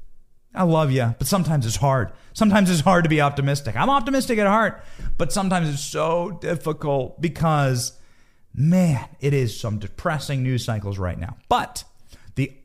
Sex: male